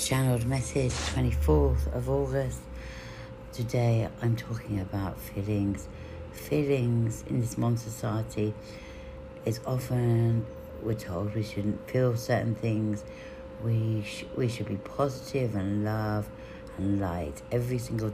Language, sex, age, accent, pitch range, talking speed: English, female, 60-79, British, 105-130 Hz, 120 wpm